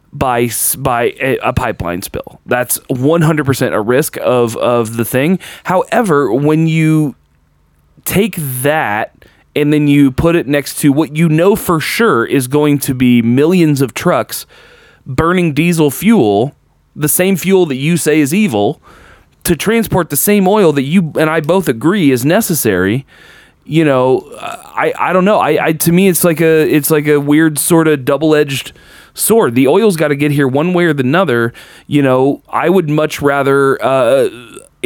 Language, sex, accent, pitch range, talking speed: English, male, American, 125-160 Hz, 175 wpm